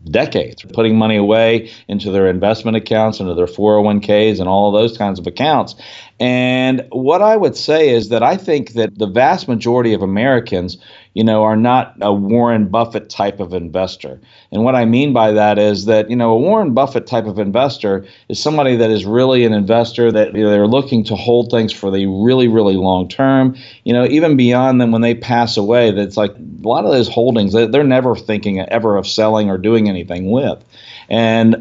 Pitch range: 105-120 Hz